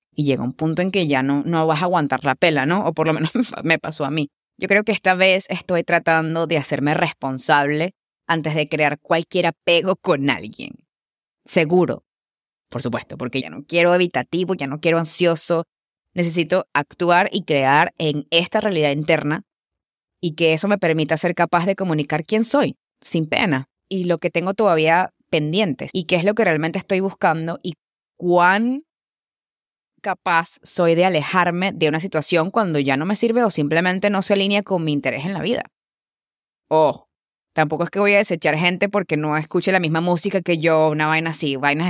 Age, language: 20-39, English